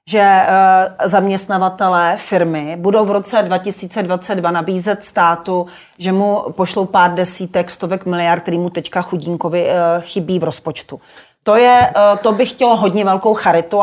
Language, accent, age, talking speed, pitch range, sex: Czech, native, 40-59, 135 wpm, 185-225 Hz, female